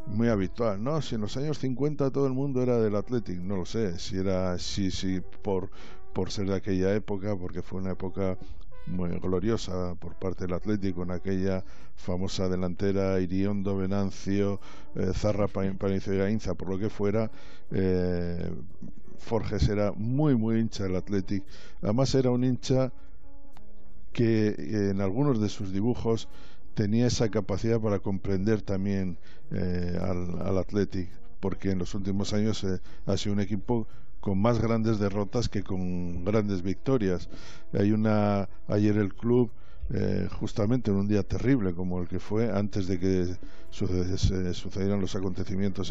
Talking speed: 155 wpm